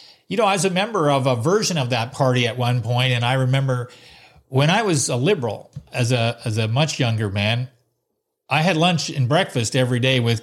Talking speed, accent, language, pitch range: 220 wpm, American, English, 120-145 Hz